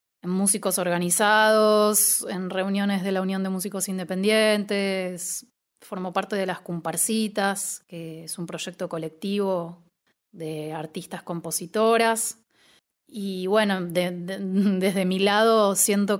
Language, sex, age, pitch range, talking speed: Spanish, female, 20-39, 175-210 Hz, 120 wpm